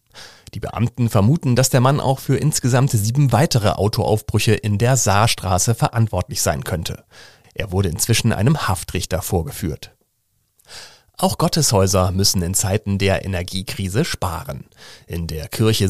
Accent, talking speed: German, 130 wpm